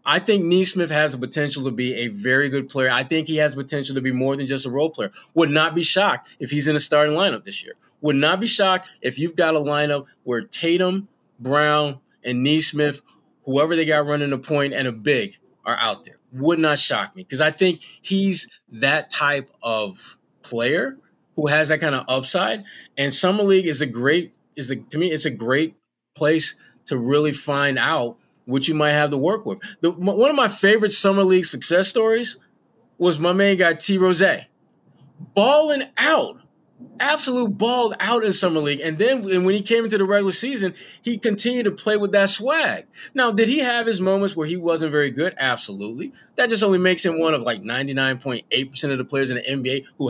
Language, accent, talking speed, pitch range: English, American, 210 wpm, 135-195 Hz